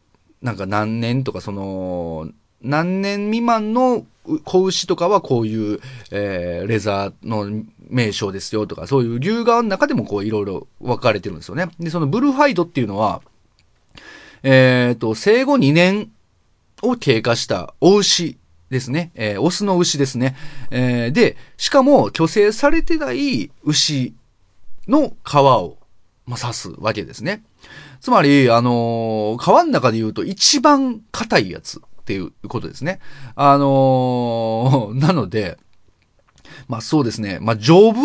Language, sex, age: Japanese, male, 30-49